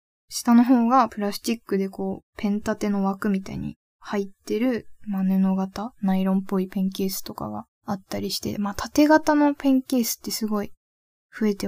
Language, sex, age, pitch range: Japanese, female, 20-39, 195-240 Hz